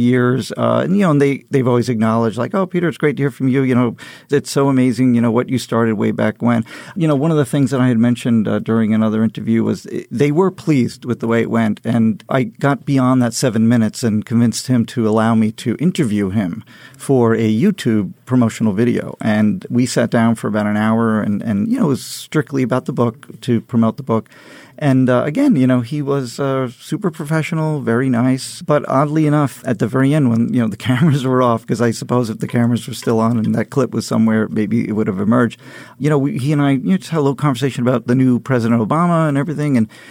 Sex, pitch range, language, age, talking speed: male, 115-145 Hz, English, 40-59, 240 wpm